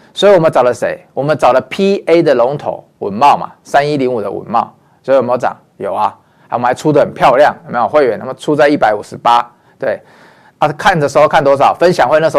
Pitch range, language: 135-185 Hz, Chinese